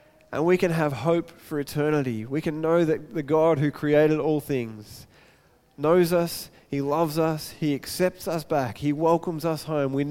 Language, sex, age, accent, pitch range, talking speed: English, male, 20-39, Australian, 135-165 Hz, 185 wpm